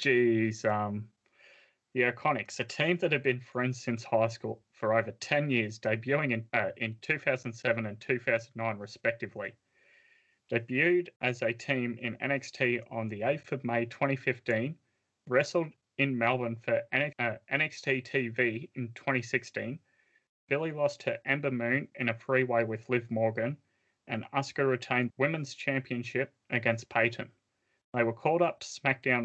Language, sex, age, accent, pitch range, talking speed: English, male, 30-49, Australian, 115-140 Hz, 145 wpm